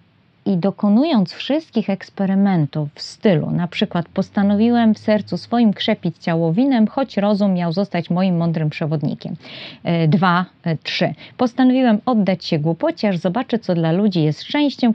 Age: 30-49